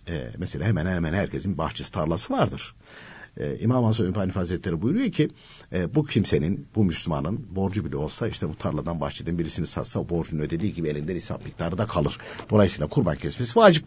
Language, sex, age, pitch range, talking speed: Turkish, male, 60-79, 85-145 Hz, 175 wpm